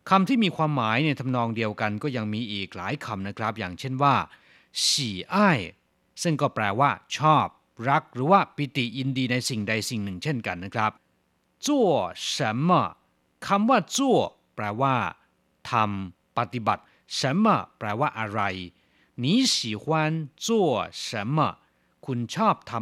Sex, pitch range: male, 110-170 Hz